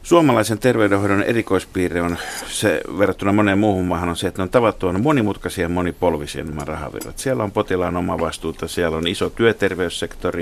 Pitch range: 85-100 Hz